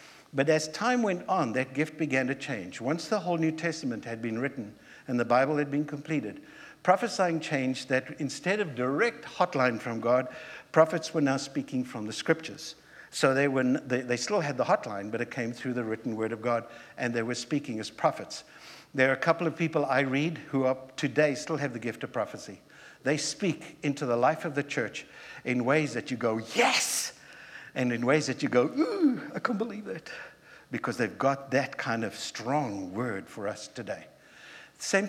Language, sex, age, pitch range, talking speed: English, male, 60-79, 130-165 Hz, 200 wpm